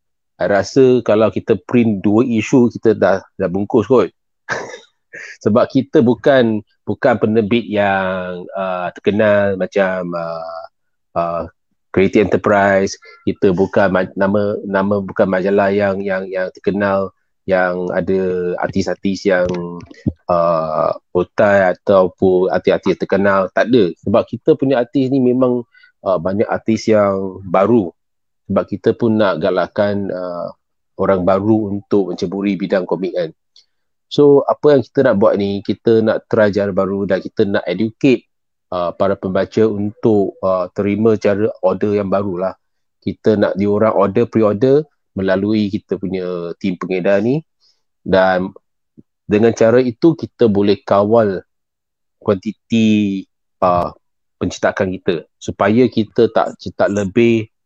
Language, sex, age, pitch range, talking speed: Malay, male, 30-49, 95-110 Hz, 130 wpm